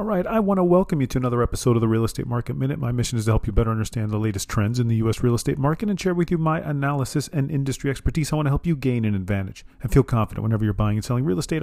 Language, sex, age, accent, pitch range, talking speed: English, male, 40-59, American, 110-140 Hz, 300 wpm